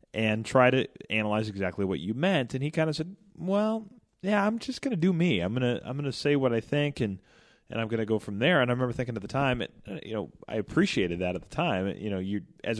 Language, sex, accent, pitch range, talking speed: English, male, American, 95-125 Hz, 265 wpm